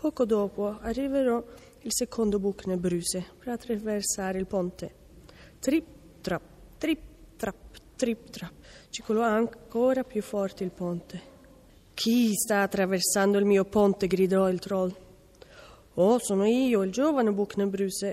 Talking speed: 120 wpm